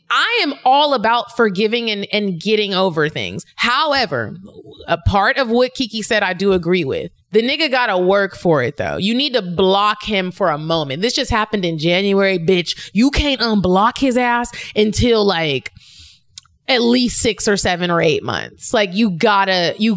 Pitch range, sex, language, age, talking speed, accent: 175-250 Hz, female, English, 20-39, 185 wpm, American